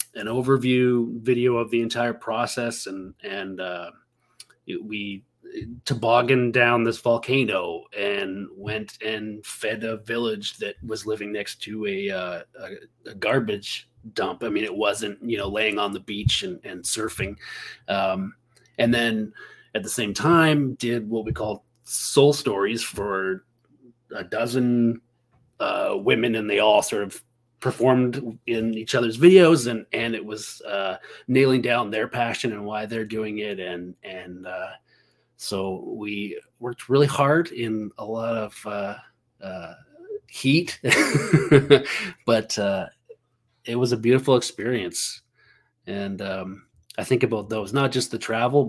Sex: male